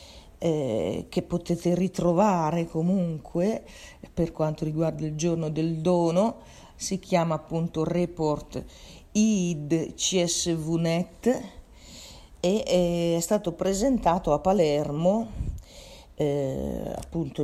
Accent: native